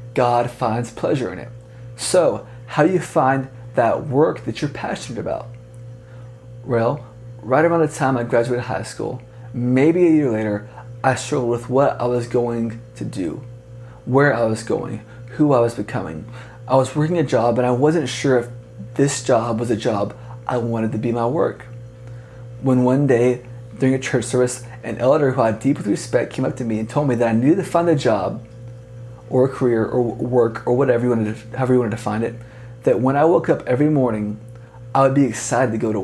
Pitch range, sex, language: 120-130 Hz, male, English